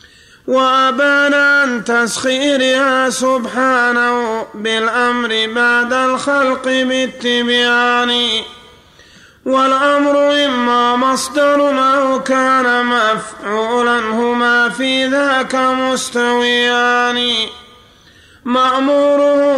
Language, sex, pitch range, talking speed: Arabic, male, 240-265 Hz, 60 wpm